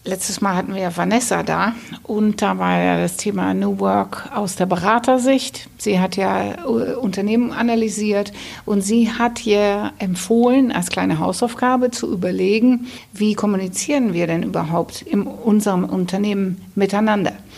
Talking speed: 145 wpm